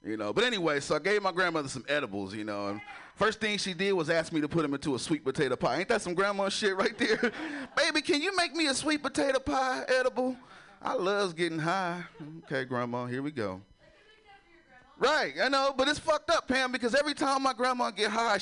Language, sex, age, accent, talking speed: English, male, 30-49, American, 230 wpm